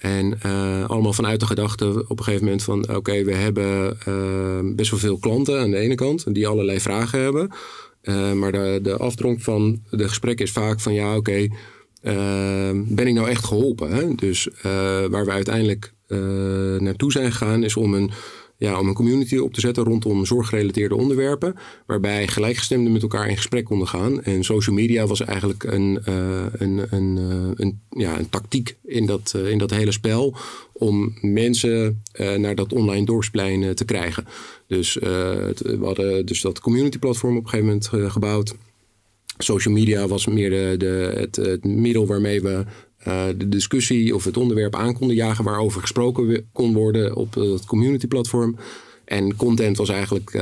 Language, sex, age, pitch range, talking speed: Dutch, male, 40-59, 95-115 Hz, 170 wpm